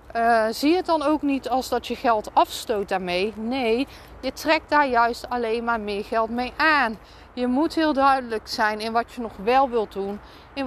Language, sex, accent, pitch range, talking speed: Dutch, female, Dutch, 230-310 Hz, 210 wpm